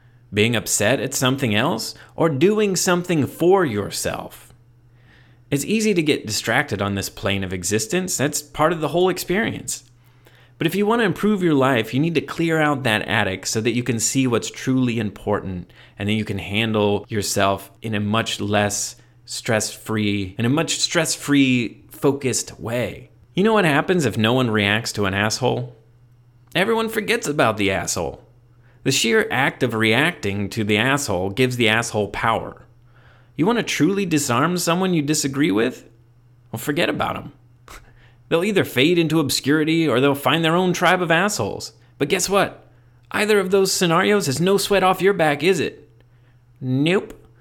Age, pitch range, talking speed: 30-49, 115-165 Hz, 170 wpm